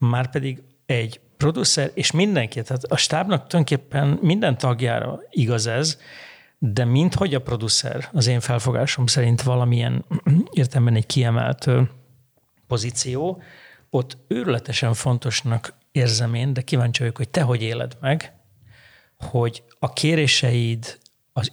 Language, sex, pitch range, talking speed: Hungarian, male, 120-145 Hz, 125 wpm